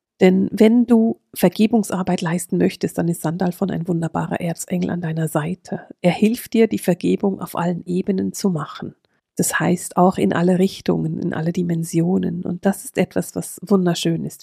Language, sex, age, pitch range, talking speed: German, female, 40-59, 175-215 Hz, 175 wpm